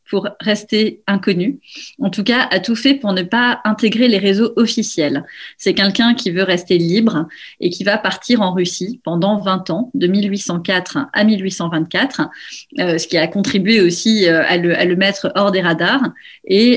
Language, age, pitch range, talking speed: French, 30-49, 180-225 Hz, 175 wpm